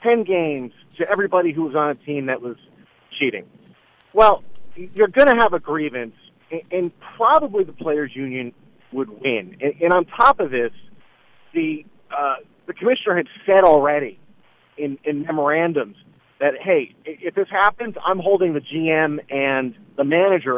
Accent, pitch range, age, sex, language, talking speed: American, 145-205 Hz, 40-59, male, English, 155 wpm